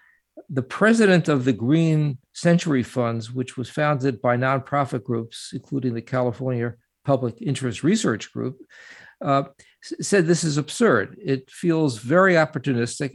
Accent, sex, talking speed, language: American, male, 130 wpm, English